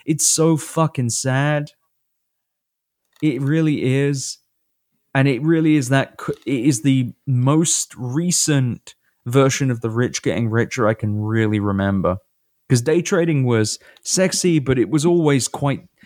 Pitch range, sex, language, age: 125-170 Hz, male, English, 20-39